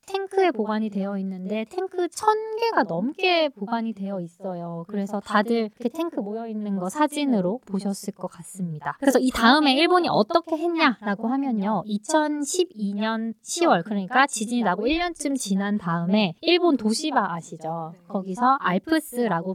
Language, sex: Korean, female